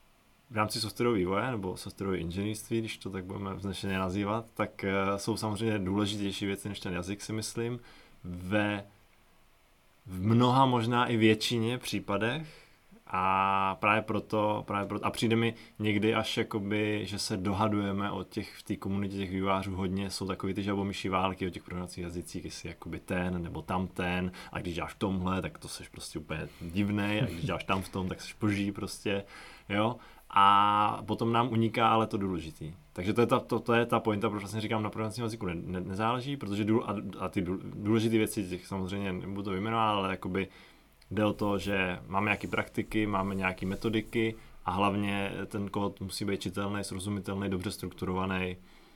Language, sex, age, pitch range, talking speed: Czech, male, 20-39, 95-110 Hz, 170 wpm